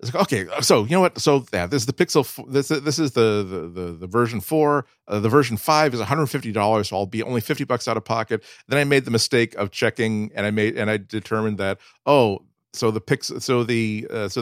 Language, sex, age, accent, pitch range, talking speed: English, male, 40-59, American, 105-125 Hz, 255 wpm